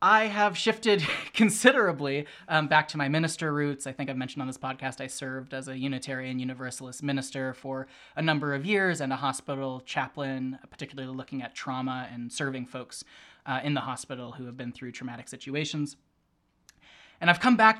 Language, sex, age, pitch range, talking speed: English, male, 20-39, 130-150 Hz, 180 wpm